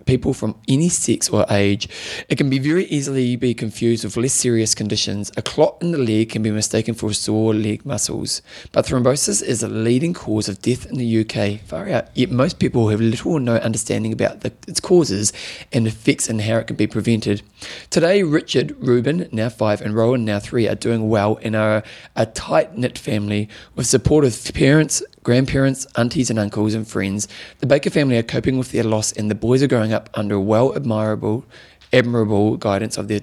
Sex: male